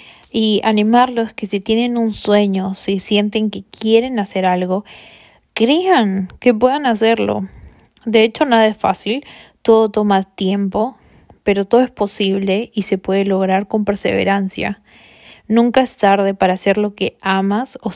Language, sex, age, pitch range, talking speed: Spanish, female, 20-39, 195-225 Hz, 145 wpm